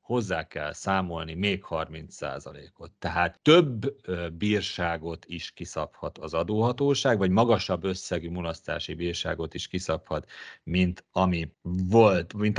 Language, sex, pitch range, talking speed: Hungarian, male, 85-115 Hz, 100 wpm